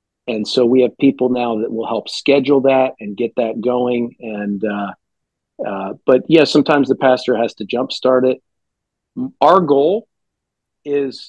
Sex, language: male, English